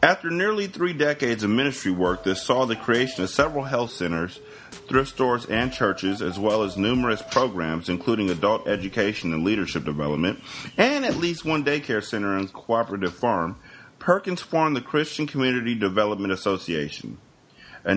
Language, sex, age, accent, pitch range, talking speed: English, male, 30-49, American, 100-135 Hz, 155 wpm